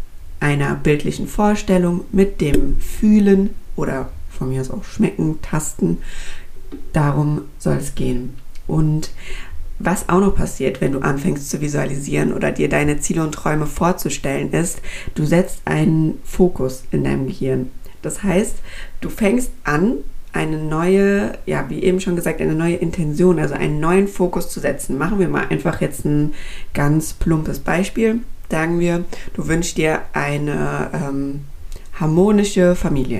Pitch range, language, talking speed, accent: 120-180 Hz, German, 145 wpm, German